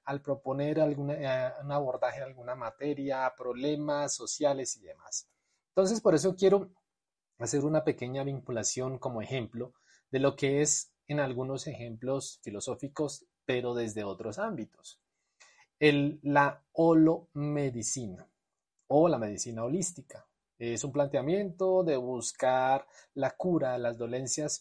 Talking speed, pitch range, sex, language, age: 125 wpm, 125-155 Hz, male, Spanish, 30-49